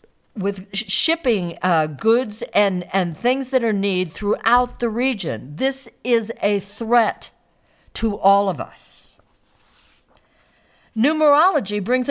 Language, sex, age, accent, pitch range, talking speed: English, female, 60-79, American, 170-245 Hz, 120 wpm